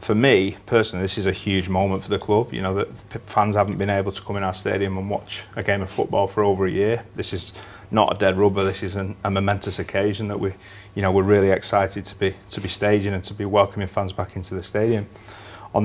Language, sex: English, male